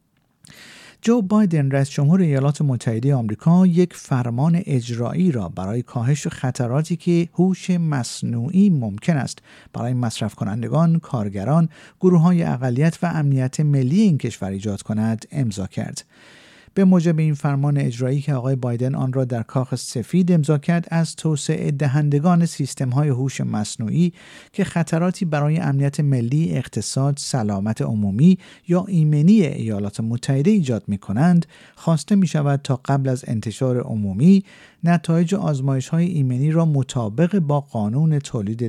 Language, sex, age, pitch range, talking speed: Persian, male, 50-69, 115-165 Hz, 130 wpm